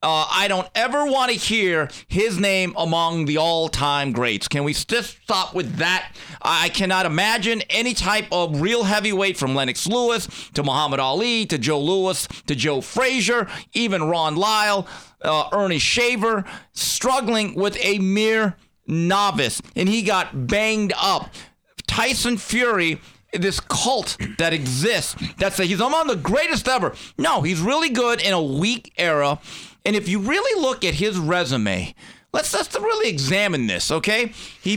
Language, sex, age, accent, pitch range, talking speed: English, male, 40-59, American, 155-225 Hz, 155 wpm